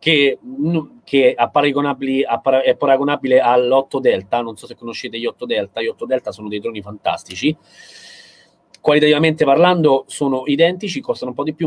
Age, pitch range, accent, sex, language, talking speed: 30-49, 135-185 Hz, native, male, Italian, 155 wpm